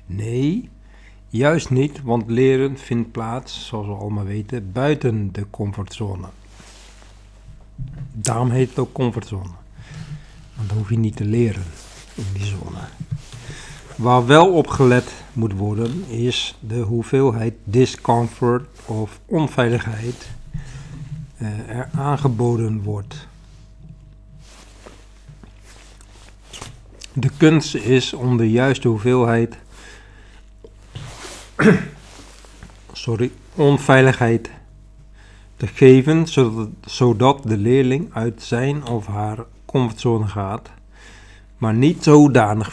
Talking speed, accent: 95 wpm, Dutch